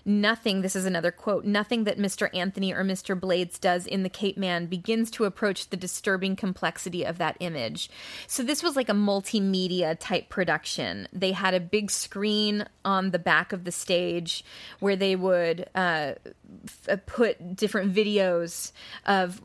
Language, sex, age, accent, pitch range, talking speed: English, female, 20-39, American, 180-205 Hz, 165 wpm